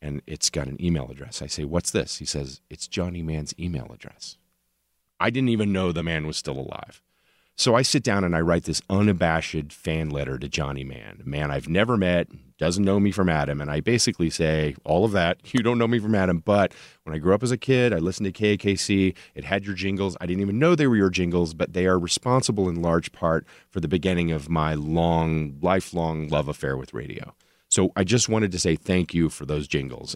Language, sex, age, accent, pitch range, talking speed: English, male, 40-59, American, 75-100 Hz, 230 wpm